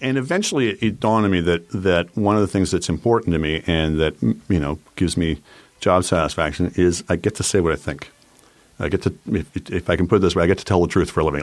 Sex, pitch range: male, 80-105 Hz